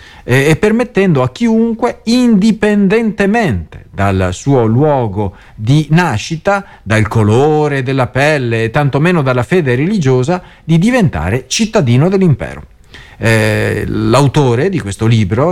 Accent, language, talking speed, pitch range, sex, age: native, Italian, 110 wpm, 110-160 Hz, male, 40-59